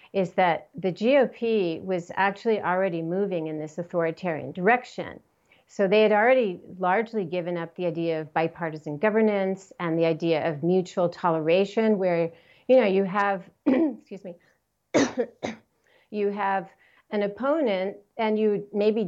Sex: female